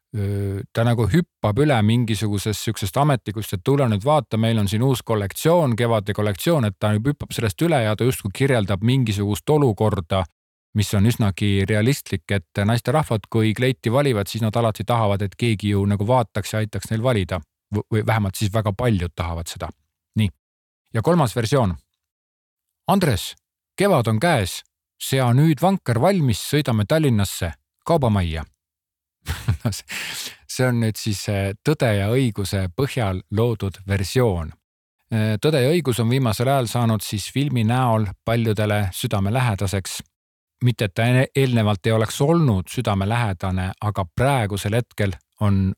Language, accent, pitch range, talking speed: Czech, Finnish, 100-125 Hz, 145 wpm